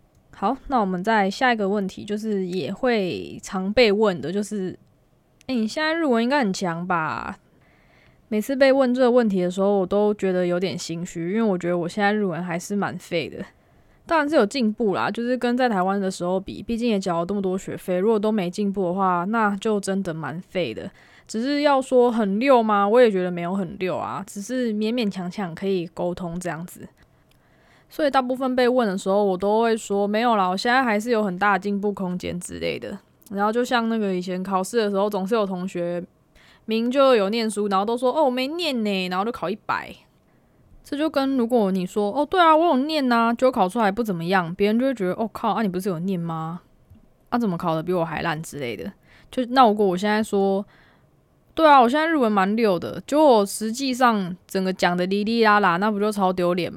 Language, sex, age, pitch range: Chinese, female, 20-39, 185-240 Hz